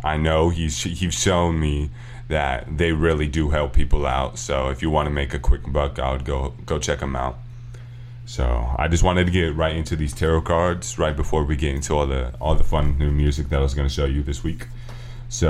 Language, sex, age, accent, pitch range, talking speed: English, male, 20-39, American, 70-85 Hz, 240 wpm